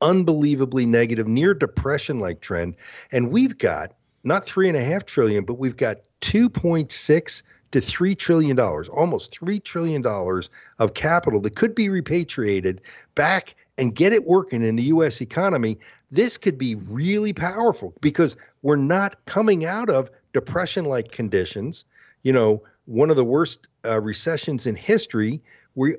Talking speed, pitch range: 150 wpm, 110-165 Hz